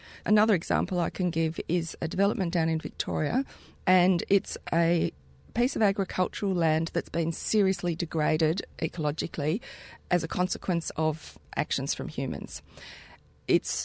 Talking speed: 135 wpm